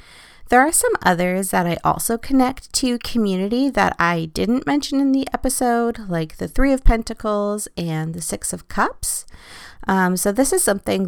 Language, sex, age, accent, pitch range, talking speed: English, female, 30-49, American, 170-245 Hz, 175 wpm